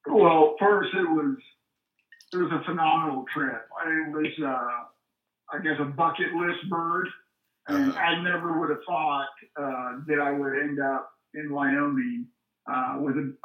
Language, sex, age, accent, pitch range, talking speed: English, male, 50-69, American, 150-185 Hz, 160 wpm